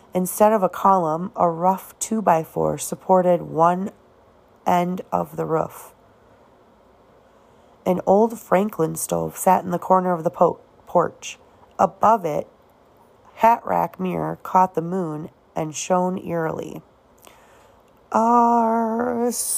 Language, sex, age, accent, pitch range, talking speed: English, female, 30-49, American, 165-195 Hz, 110 wpm